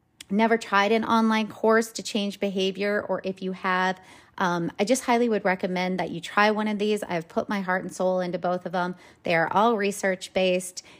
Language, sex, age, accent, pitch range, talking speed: English, female, 30-49, American, 180-220 Hz, 205 wpm